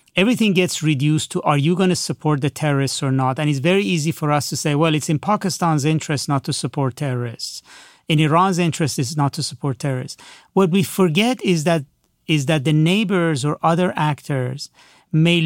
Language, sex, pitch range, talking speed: English, male, 145-175 Hz, 200 wpm